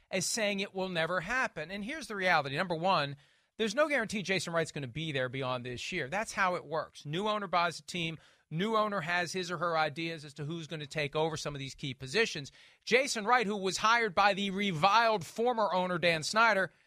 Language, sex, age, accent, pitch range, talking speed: English, male, 40-59, American, 155-220 Hz, 230 wpm